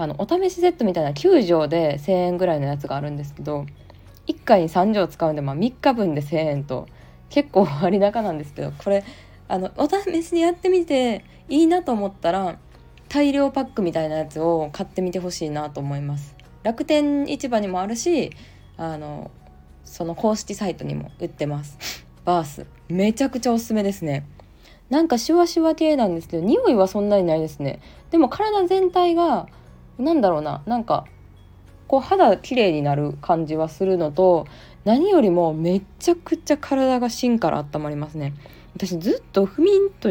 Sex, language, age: female, Japanese, 20-39